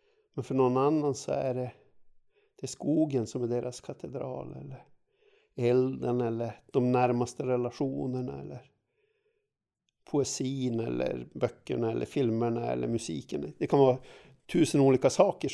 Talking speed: 125 wpm